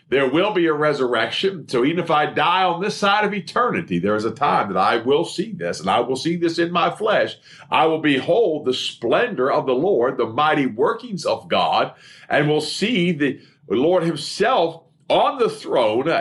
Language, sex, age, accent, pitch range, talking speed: English, male, 50-69, American, 130-170 Hz, 200 wpm